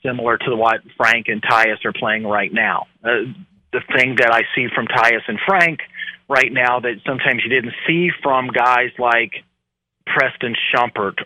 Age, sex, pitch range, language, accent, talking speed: 40-59, male, 125-155 Hz, English, American, 170 wpm